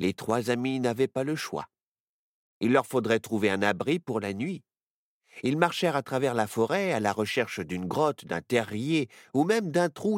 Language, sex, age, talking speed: French, male, 50-69, 195 wpm